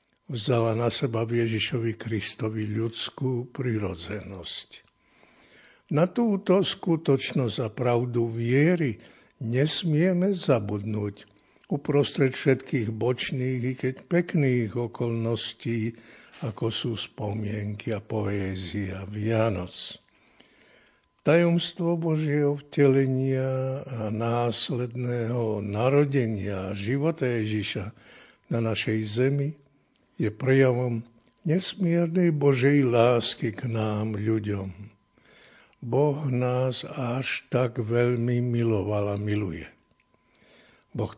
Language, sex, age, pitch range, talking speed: Slovak, male, 60-79, 110-145 Hz, 85 wpm